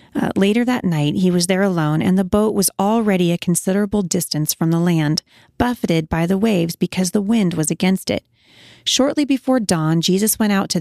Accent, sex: American, female